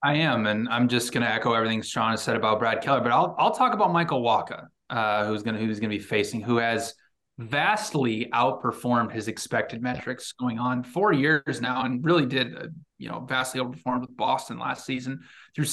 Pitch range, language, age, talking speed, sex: 125-155 Hz, English, 20-39, 210 wpm, male